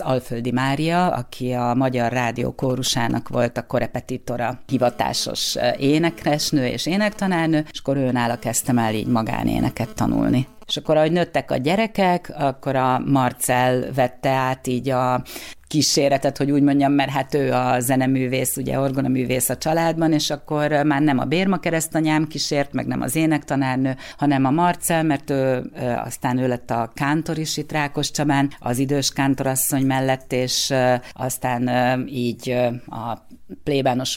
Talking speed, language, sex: 140 wpm, Hungarian, female